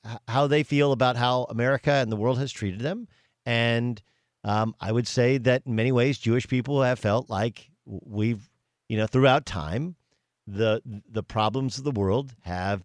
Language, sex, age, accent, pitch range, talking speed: English, male, 50-69, American, 115-140 Hz, 175 wpm